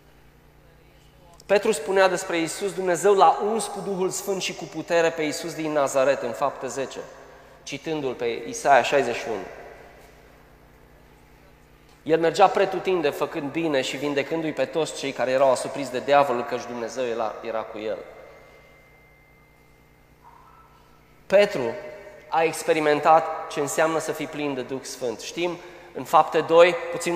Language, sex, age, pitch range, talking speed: Romanian, male, 20-39, 155-190 Hz, 135 wpm